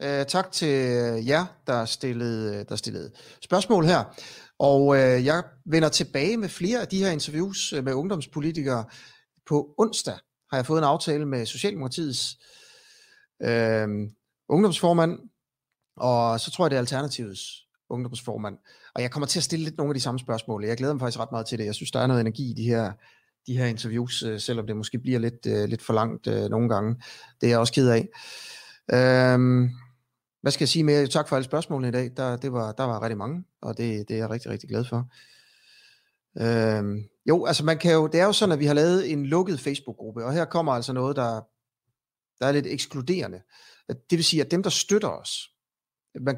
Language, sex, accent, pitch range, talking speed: Danish, male, native, 120-160 Hz, 190 wpm